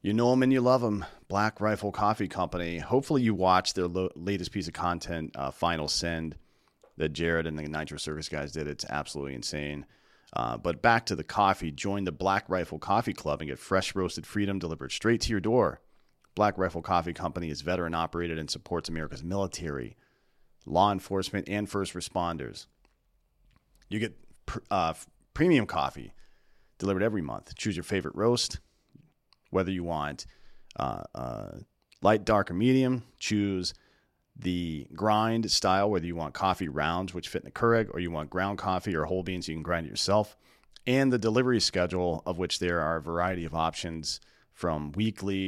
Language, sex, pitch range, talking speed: English, male, 80-100 Hz, 180 wpm